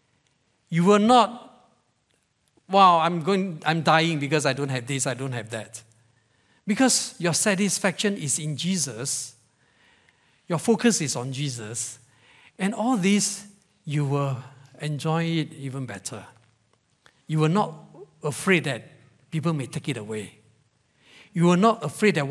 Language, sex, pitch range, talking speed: English, male, 135-175 Hz, 140 wpm